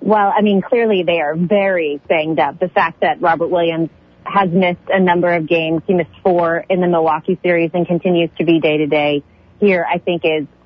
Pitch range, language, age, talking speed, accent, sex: 180-245 Hz, English, 30-49, 205 wpm, American, female